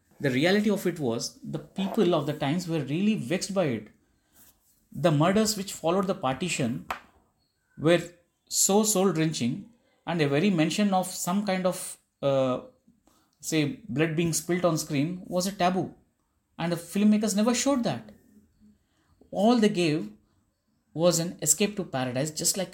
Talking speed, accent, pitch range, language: 155 wpm, Indian, 125-180 Hz, English